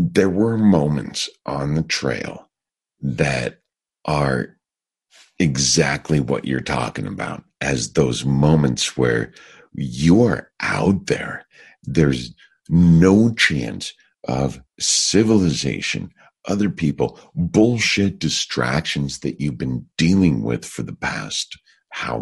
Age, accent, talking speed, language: 50-69, American, 105 wpm, English